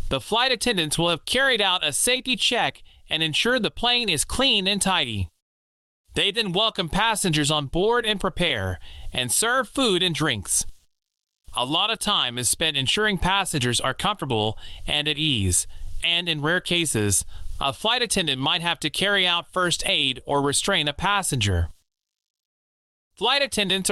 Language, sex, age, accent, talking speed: English, male, 30-49, American, 160 wpm